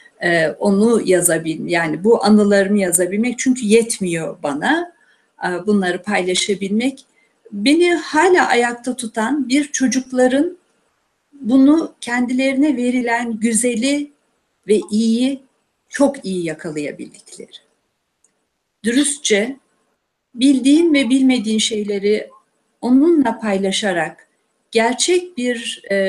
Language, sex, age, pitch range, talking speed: Turkish, female, 60-79, 210-285 Hz, 80 wpm